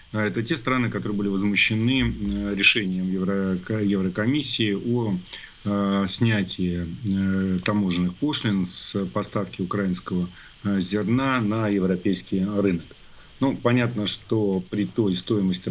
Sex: male